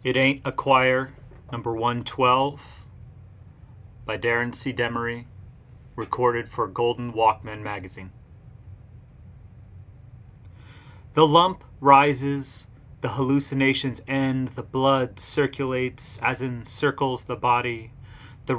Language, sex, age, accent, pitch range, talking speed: English, male, 30-49, American, 115-135 Hz, 95 wpm